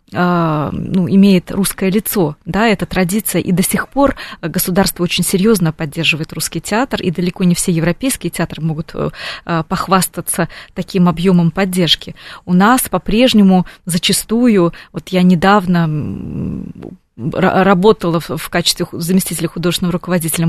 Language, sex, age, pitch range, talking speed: Russian, female, 20-39, 170-200 Hz, 125 wpm